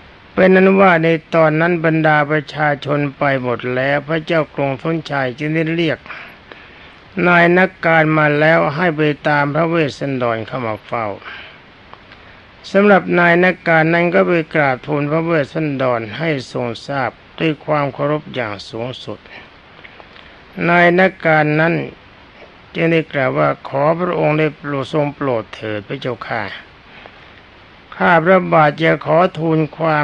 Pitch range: 130-165 Hz